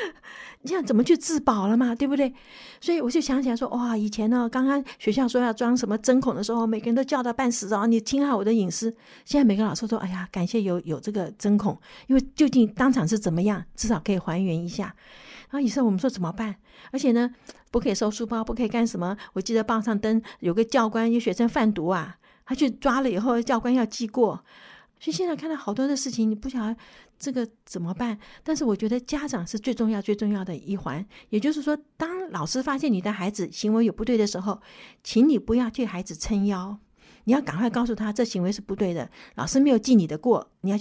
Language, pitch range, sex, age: Chinese, 205-255 Hz, female, 50-69